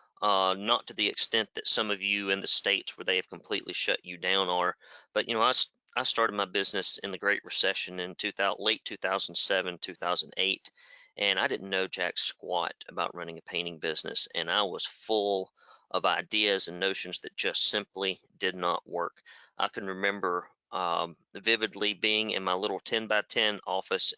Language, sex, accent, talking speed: English, male, American, 185 wpm